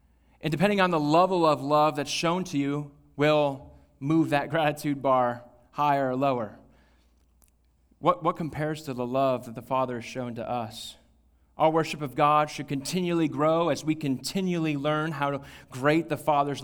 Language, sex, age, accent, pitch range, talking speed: English, male, 30-49, American, 120-155 Hz, 170 wpm